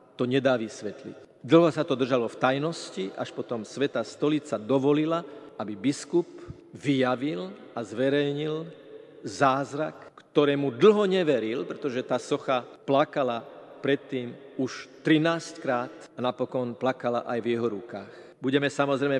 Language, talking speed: Slovak, 125 wpm